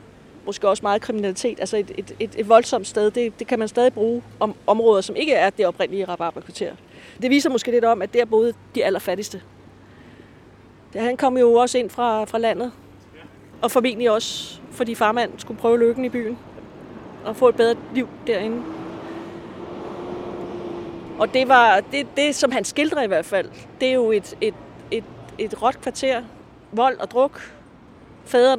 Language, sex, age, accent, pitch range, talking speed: Danish, female, 30-49, native, 210-250 Hz, 180 wpm